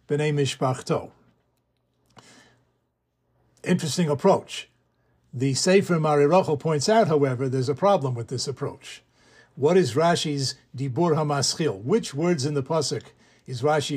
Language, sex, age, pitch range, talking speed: English, male, 60-79, 140-175 Hz, 110 wpm